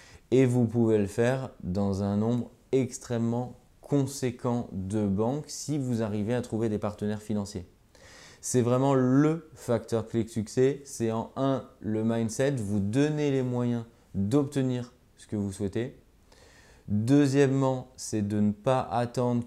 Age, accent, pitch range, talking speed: 20-39, French, 100-125 Hz, 145 wpm